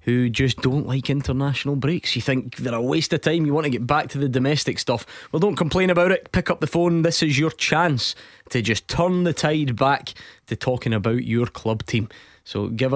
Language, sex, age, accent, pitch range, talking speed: English, male, 20-39, British, 115-145 Hz, 225 wpm